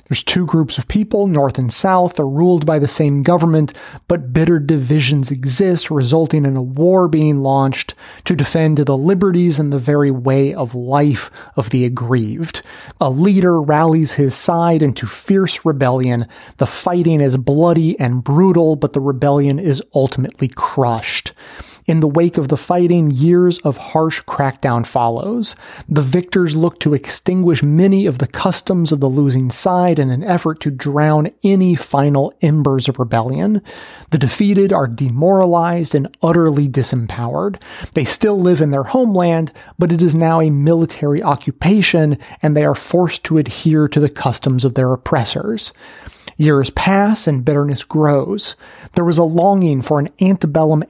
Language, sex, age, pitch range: English, male, 30-49, 140-175 Hz